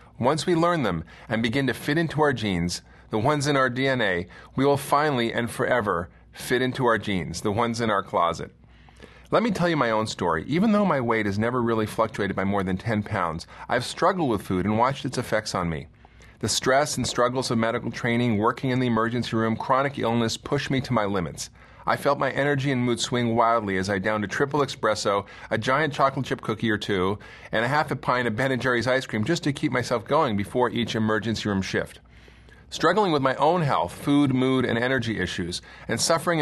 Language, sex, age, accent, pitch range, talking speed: English, male, 30-49, American, 105-135 Hz, 220 wpm